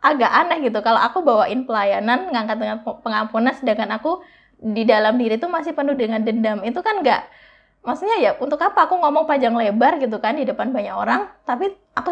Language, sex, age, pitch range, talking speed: Indonesian, female, 20-39, 225-285 Hz, 195 wpm